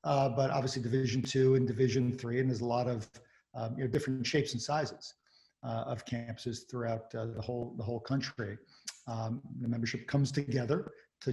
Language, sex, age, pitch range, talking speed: English, male, 50-69, 120-140 Hz, 190 wpm